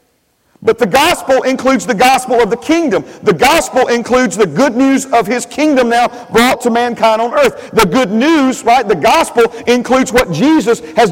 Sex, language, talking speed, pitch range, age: male, English, 185 wpm, 220-260 Hz, 50-69